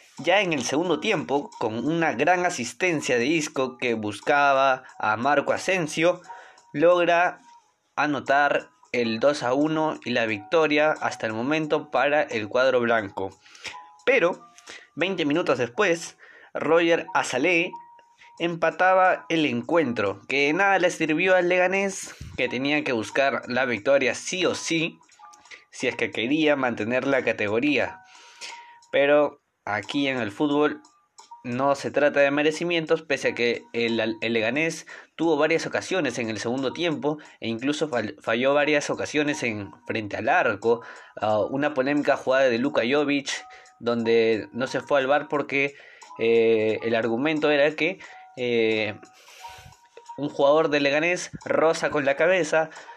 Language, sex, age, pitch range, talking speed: Spanish, male, 20-39, 125-165 Hz, 140 wpm